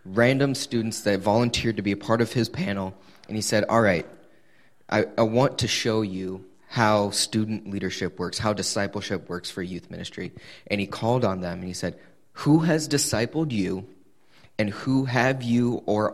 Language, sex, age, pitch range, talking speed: English, male, 20-39, 95-120 Hz, 180 wpm